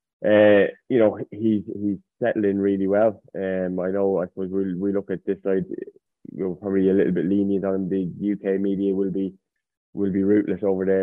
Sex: male